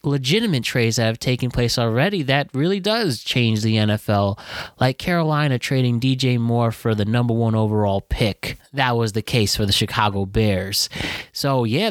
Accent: American